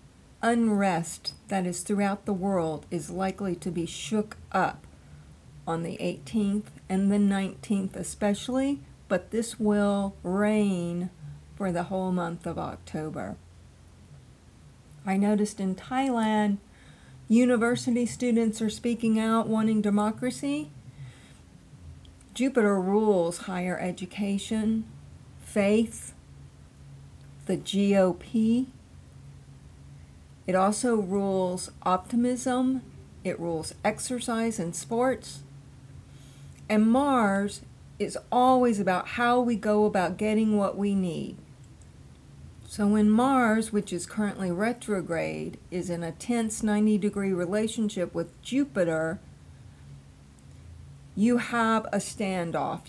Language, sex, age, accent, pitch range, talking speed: English, female, 50-69, American, 170-220 Hz, 100 wpm